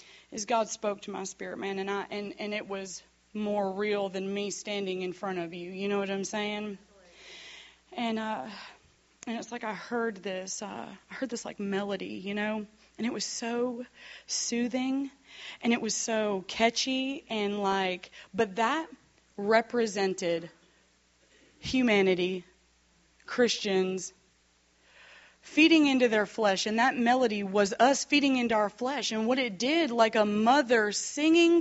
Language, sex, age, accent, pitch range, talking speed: English, female, 30-49, American, 200-295 Hz, 155 wpm